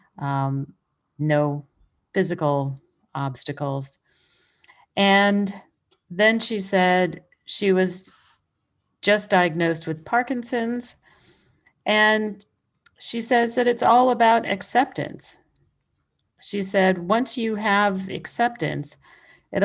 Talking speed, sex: 90 wpm, female